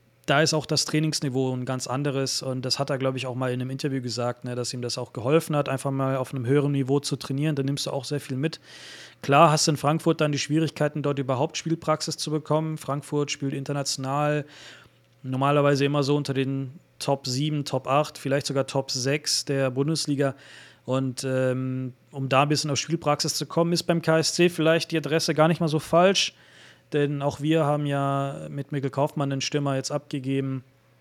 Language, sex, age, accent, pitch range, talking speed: German, male, 30-49, German, 130-150 Hz, 205 wpm